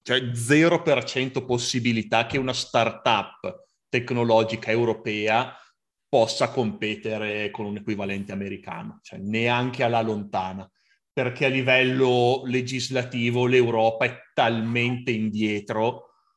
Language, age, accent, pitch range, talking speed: Italian, 30-49, native, 110-135 Hz, 95 wpm